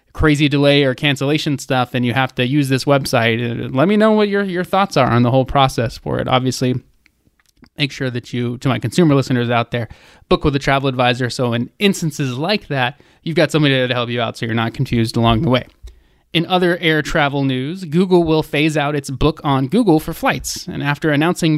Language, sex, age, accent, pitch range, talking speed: English, male, 20-39, American, 125-160 Hz, 220 wpm